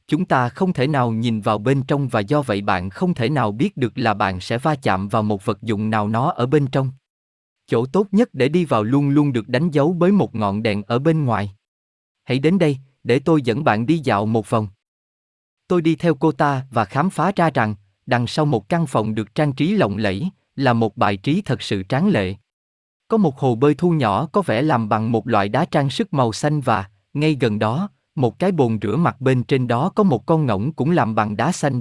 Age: 20-39